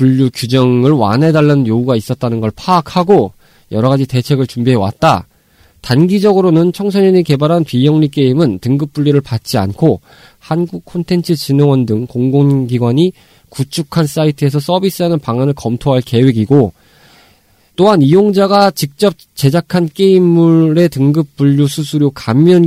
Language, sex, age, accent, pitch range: Korean, male, 20-39, native, 125-165 Hz